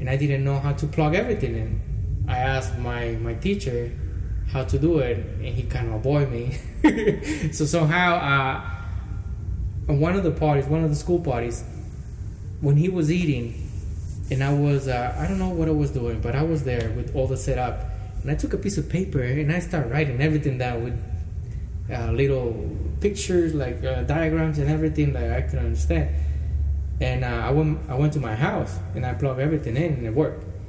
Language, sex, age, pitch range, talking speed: English, male, 20-39, 105-145 Hz, 200 wpm